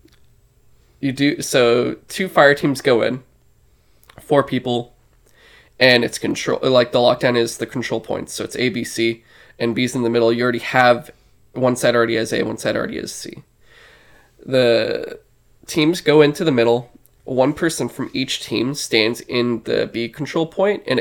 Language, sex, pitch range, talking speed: English, male, 120-140 Hz, 175 wpm